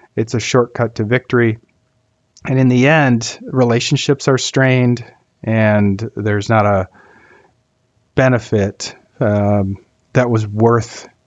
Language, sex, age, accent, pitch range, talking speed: English, male, 40-59, American, 105-125 Hz, 110 wpm